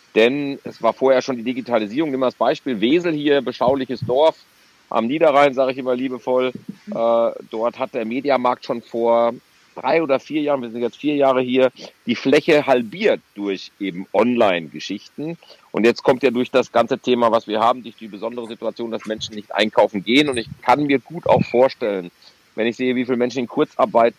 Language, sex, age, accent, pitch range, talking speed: German, male, 40-59, German, 115-140 Hz, 195 wpm